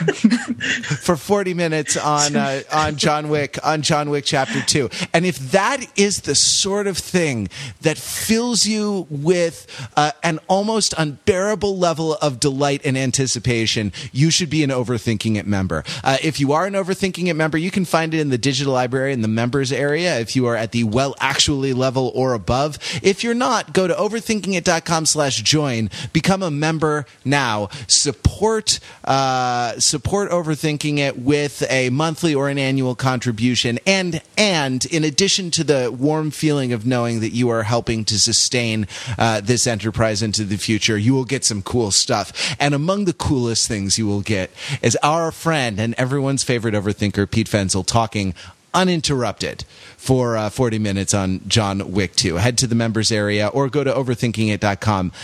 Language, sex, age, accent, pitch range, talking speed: English, male, 30-49, American, 115-160 Hz, 170 wpm